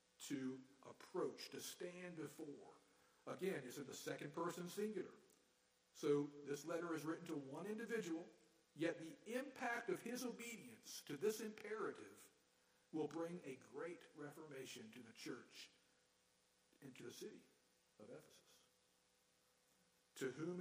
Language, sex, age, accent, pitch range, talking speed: English, male, 60-79, American, 140-190 Hz, 130 wpm